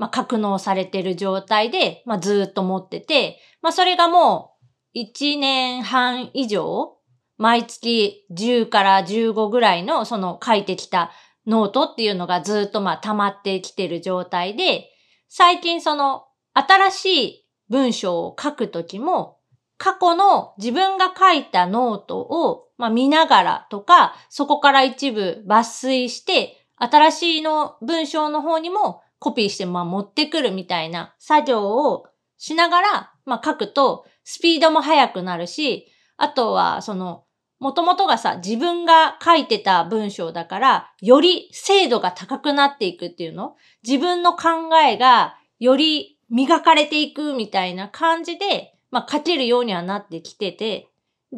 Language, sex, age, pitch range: Japanese, female, 30-49, 200-320 Hz